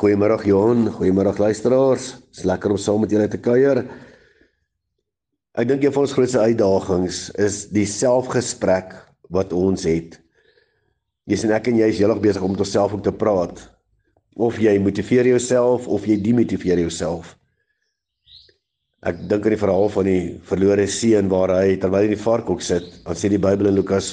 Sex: male